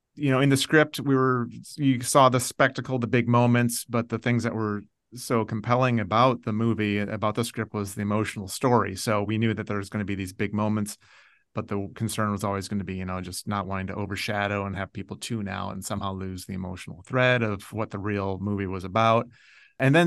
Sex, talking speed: male, 235 wpm